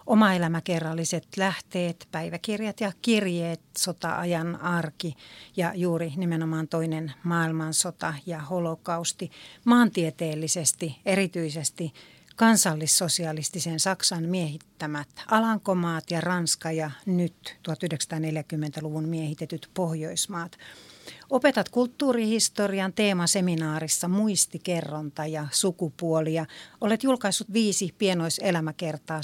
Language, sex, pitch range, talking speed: Finnish, female, 160-190 Hz, 75 wpm